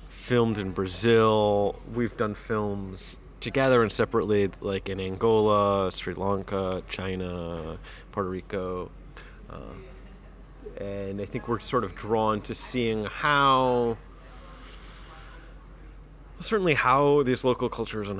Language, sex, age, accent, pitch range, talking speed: English, male, 20-39, American, 95-115 Hz, 110 wpm